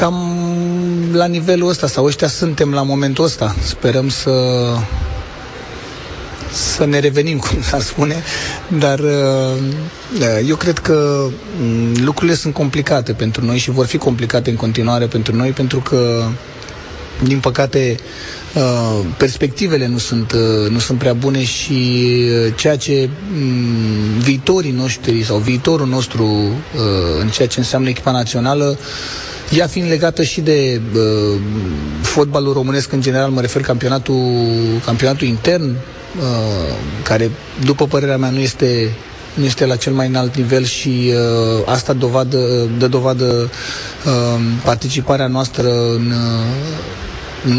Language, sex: Romanian, male